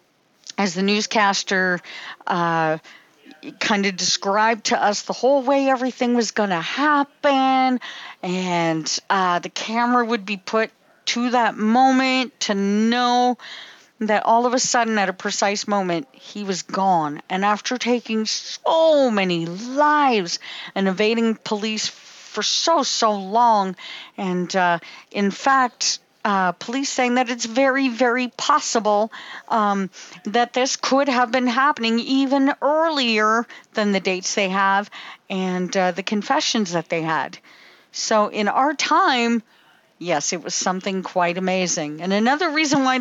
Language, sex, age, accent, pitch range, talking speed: English, female, 50-69, American, 190-250 Hz, 140 wpm